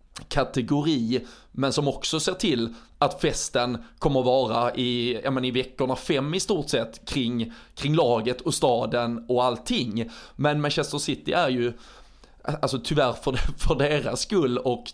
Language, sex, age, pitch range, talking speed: Swedish, male, 20-39, 120-140 Hz, 155 wpm